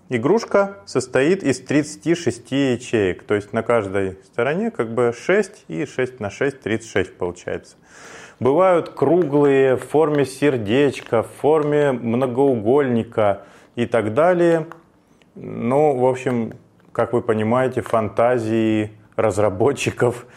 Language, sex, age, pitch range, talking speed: Russian, male, 30-49, 110-140 Hz, 110 wpm